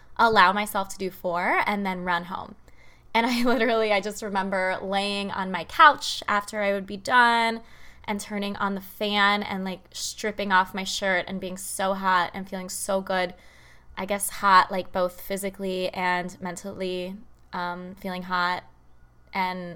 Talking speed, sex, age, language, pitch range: 165 wpm, female, 20-39, English, 185-220 Hz